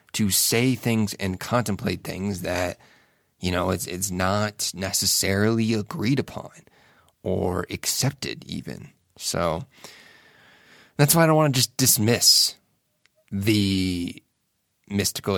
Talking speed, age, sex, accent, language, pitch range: 115 wpm, 30-49, male, American, English, 95-115 Hz